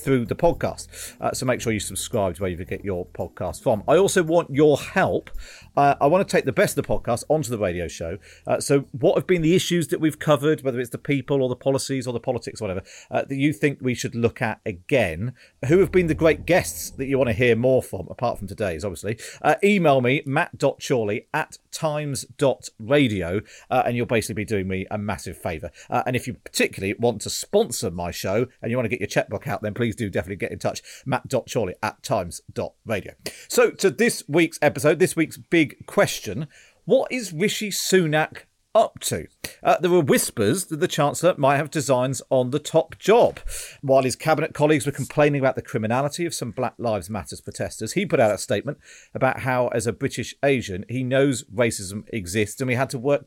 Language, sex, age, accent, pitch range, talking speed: English, male, 40-59, British, 110-150 Hz, 215 wpm